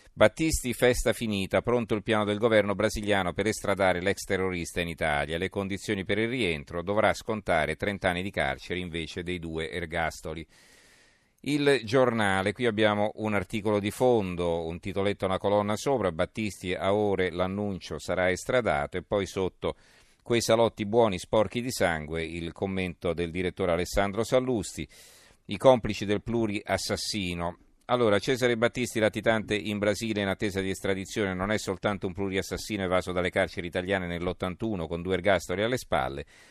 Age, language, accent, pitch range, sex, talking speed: 40-59, Italian, native, 90-105 Hz, male, 155 wpm